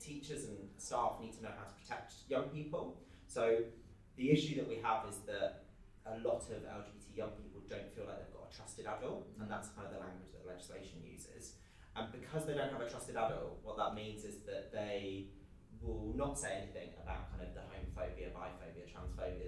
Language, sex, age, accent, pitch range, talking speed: English, male, 20-39, British, 90-120 Hz, 205 wpm